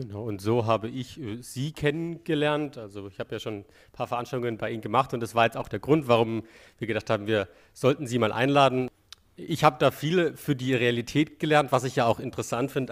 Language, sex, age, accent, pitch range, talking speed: German, male, 40-59, German, 120-140 Hz, 225 wpm